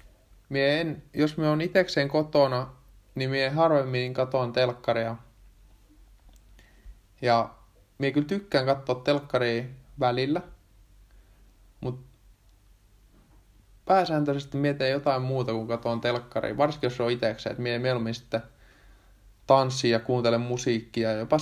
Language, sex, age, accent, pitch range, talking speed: Finnish, male, 20-39, native, 100-130 Hz, 115 wpm